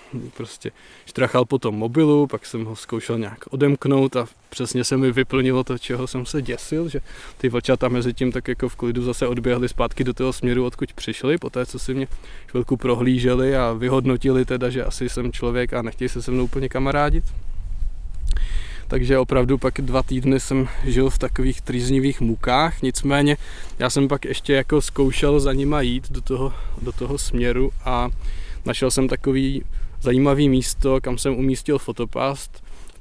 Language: Czech